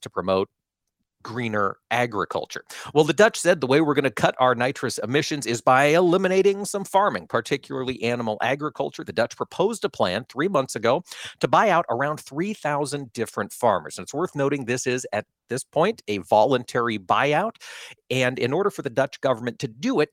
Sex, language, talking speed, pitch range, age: male, English, 185 wpm, 120-155 Hz, 40-59